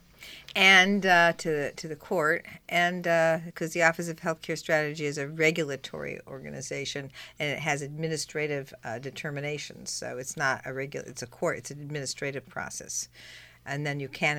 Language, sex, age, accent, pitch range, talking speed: English, female, 50-69, American, 155-190 Hz, 170 wpm